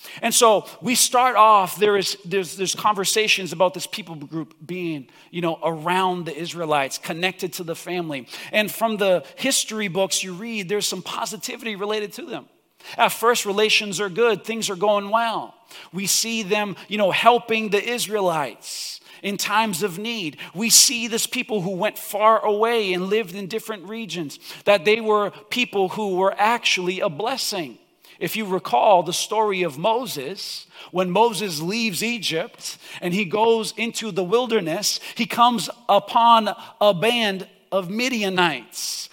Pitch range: 180-220 Hz